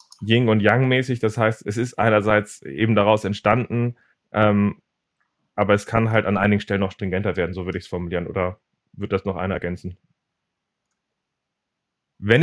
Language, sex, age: German, male, 30-49